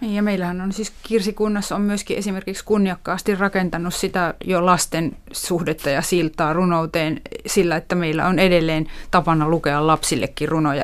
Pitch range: 160-185 Hz